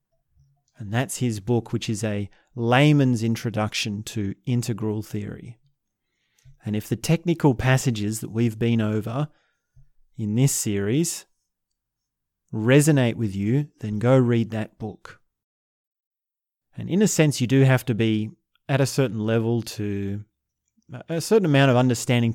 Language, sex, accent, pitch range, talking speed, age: English, male, Australian, 110-135 Hz, 135 wpm, 30-49